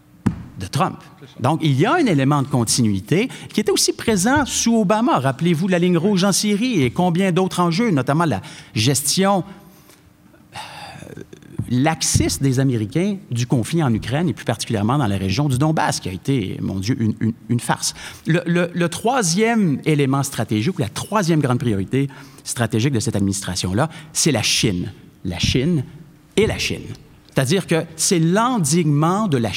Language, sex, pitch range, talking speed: French, male, 120-175 Hz, 170 wpm